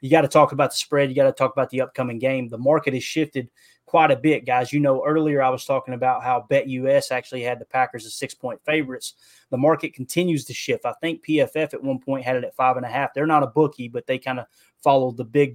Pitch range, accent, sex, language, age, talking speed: 125-145 Hz, American, male, English, 20-39, 250 wpm